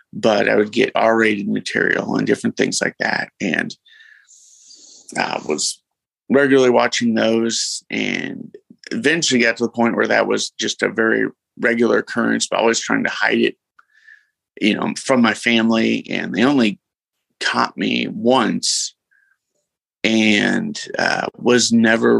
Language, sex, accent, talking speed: English, male, American, 145 wpm